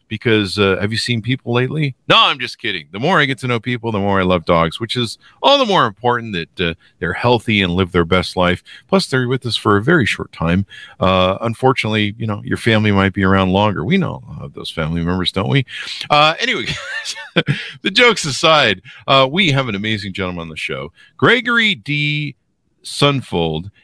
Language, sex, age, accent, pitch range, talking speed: English, male, 50-69, American, 100-145 Hz, 215 wpm